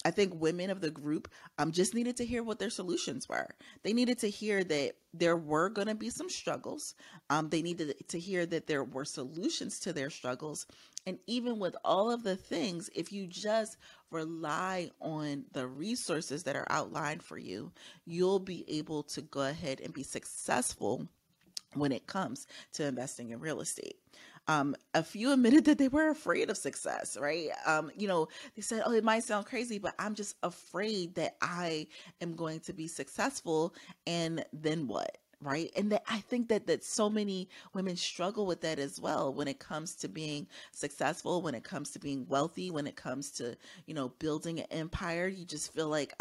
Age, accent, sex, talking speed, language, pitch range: 30-49, American, female, 195 wpm, English, 155-205 Hz